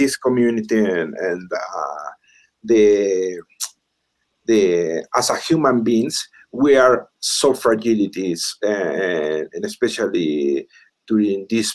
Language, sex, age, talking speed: English, male, 50-69, 100 wpm